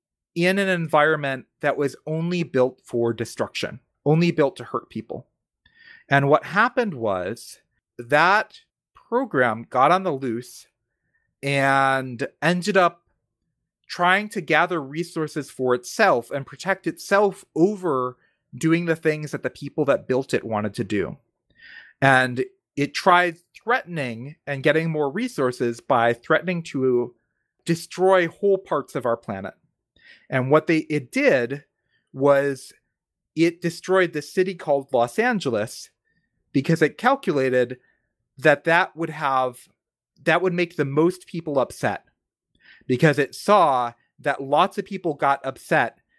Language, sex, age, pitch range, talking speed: English, male, 30-49, 130-175 Hz, 135 wpm